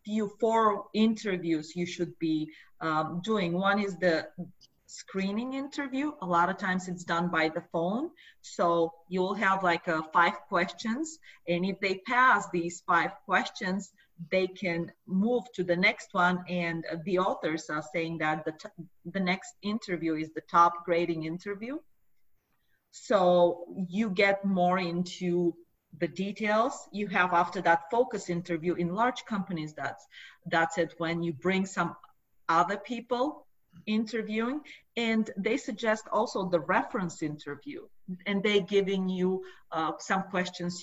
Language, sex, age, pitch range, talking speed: English, female, 30-49, 170-205 Hz, 145 wpm